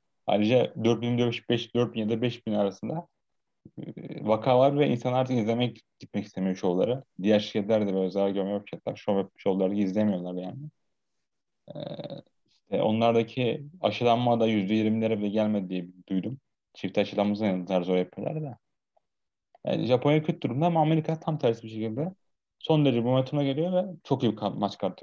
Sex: male